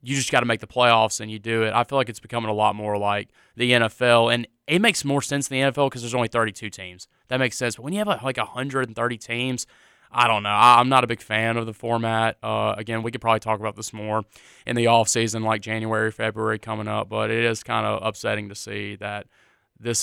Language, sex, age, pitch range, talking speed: English, male, 20-39, 110-125 Hz, 250 wpm